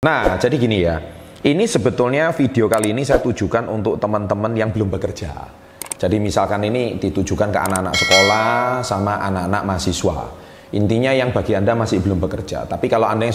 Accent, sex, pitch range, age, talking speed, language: native, male, 95-120 Hz, 30-49, 165 wpm, Indonesian